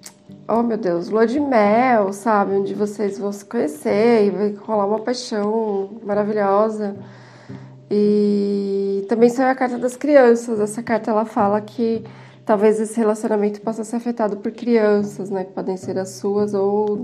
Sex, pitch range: female, 200-230 Hz